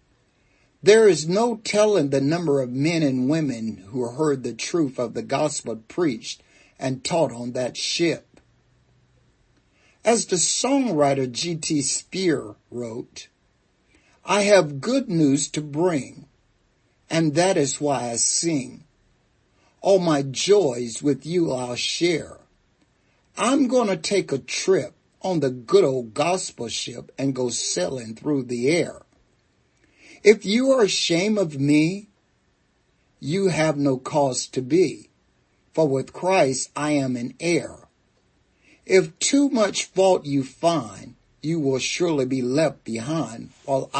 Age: 60-79